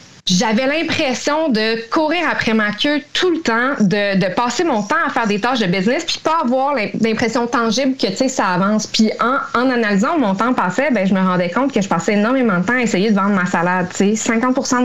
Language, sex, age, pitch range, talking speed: French, female, 20-39, 200-260 Hz, 220 wpm